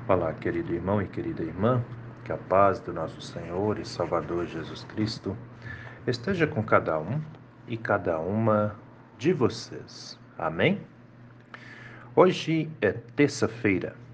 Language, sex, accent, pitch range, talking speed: Portuguese, male, Brazilian, 95-120 Hz, 125 wpm